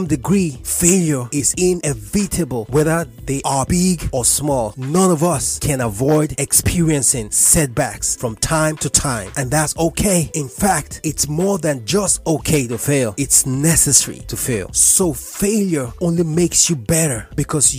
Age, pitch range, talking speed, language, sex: 30-49, 130-170 Hz, 150 wpm, English, male